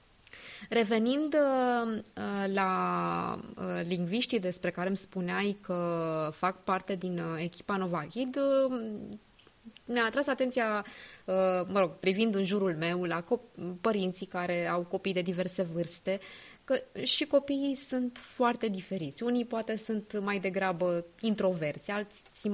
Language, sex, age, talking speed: Romanian, female, 20-39, 115 wpm